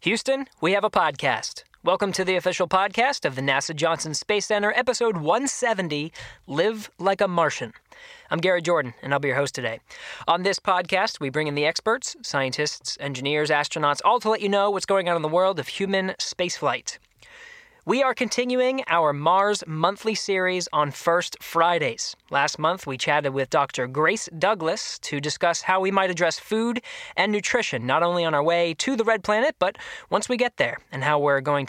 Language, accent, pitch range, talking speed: Danish, American, 150-210 Hz, 190 wpm